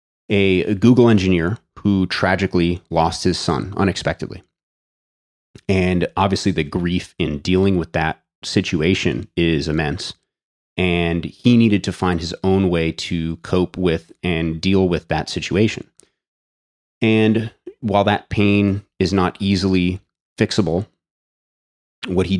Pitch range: 85-100 Hz